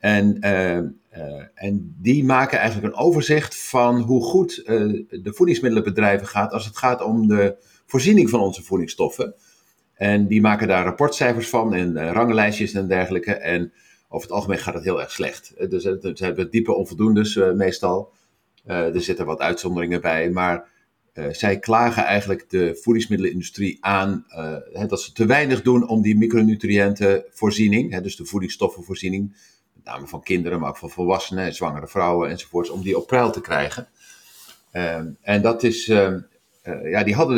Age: 50-69